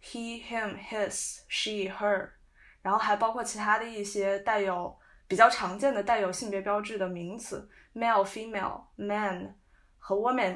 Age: 10-29